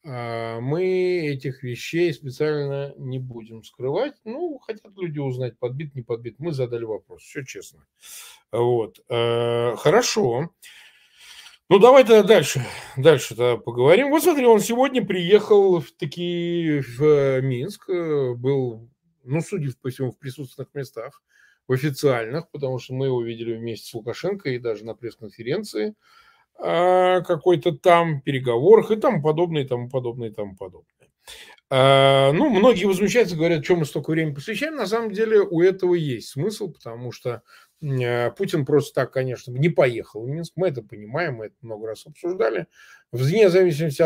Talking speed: 145 wpm